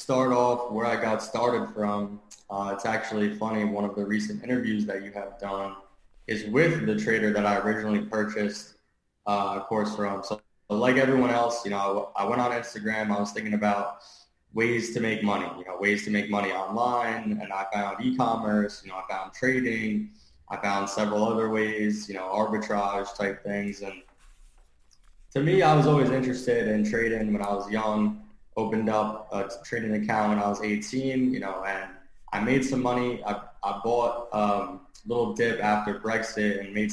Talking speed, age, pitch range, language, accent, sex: 190 wpm, 20-39, 100-115 Hz, English, American, male